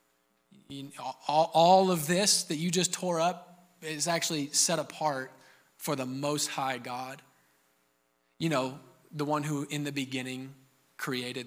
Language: English